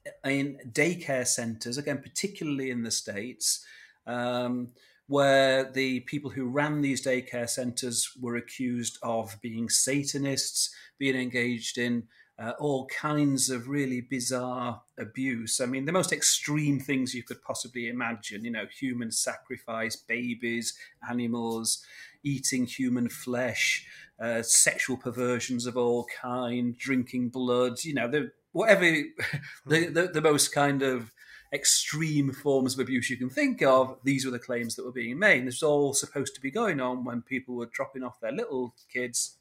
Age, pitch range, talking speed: 40-59, 120-145 Hz, 155 wpm